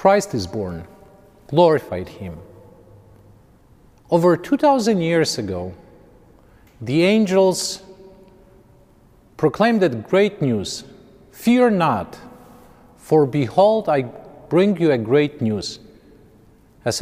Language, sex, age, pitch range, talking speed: Ukrainian, male, 40-59, 115-170 Hz, 90 wpm